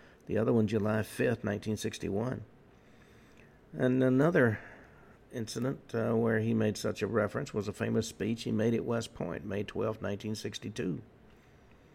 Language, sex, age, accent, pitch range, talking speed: English, male, 50-69, American, 110-125 Hz, 140 wpm